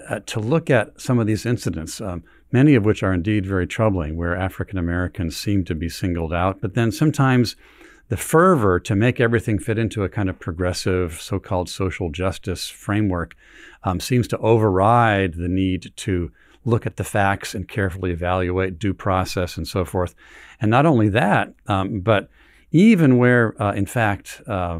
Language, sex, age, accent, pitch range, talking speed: English, male, 50-69, American, 90-115 Hz, 175 wpm